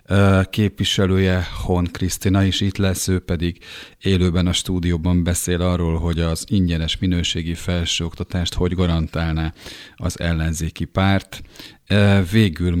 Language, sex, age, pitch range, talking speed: Hungarian, male, 40-59, 85-100 Hz, 115 wpm